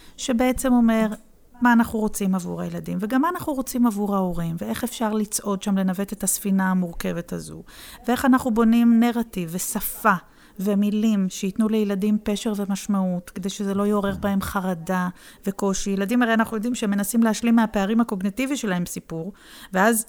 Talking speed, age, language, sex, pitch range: 150 wpm, 40-59, Hebrew, female, 195-235 Hz